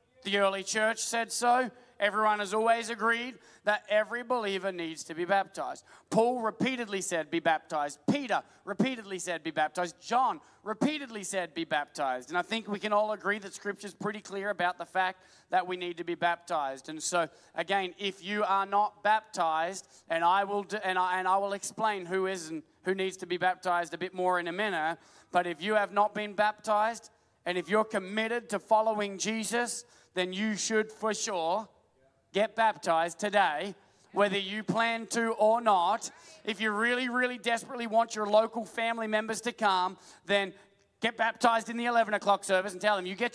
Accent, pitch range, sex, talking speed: Australian, 185-225 Hz, male, 185 wpm